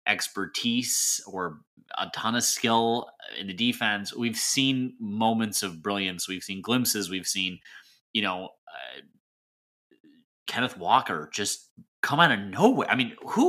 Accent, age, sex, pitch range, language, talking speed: American, 30-49, male, 105-165 Hz, English, 140 wpm